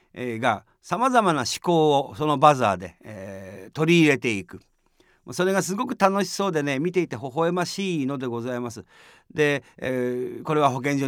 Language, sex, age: Japanese, male, 50-69